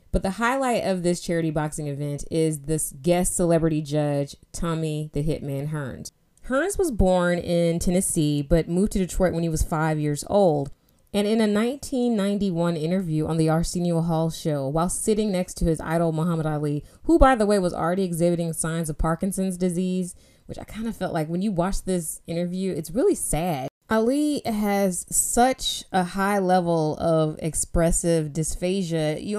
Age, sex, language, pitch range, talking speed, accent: 20-39, female, English, 160-200 Hz, 175 wpm, American